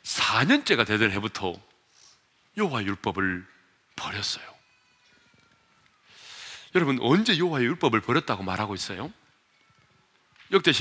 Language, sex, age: Korean, male, 40-59